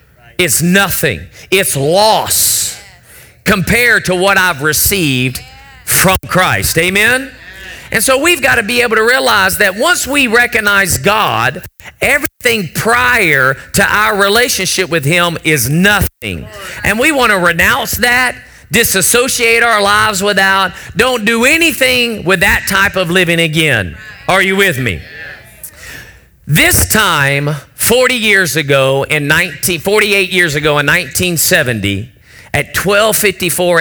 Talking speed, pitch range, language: 130 wpm, 155-215 Hz, English